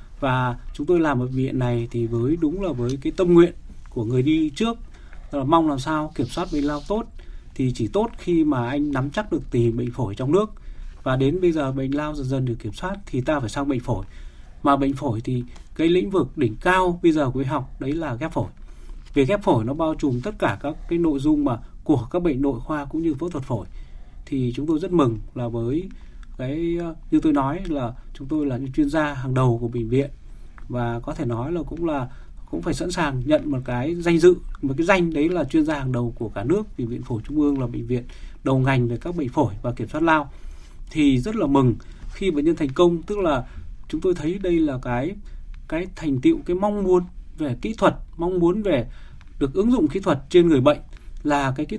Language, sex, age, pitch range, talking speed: Vietnamese, male, 20-39, 120-165 Hz, 240 wpm